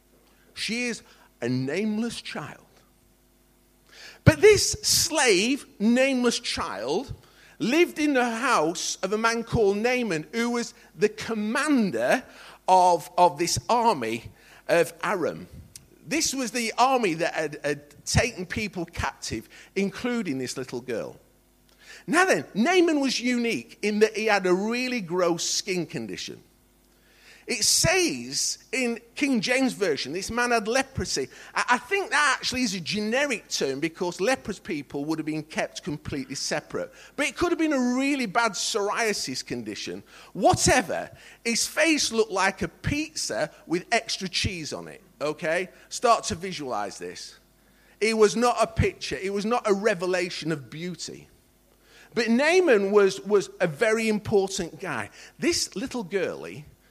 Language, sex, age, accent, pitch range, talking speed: English, male, 50-69, British, 180-245 Hz, 140 wpm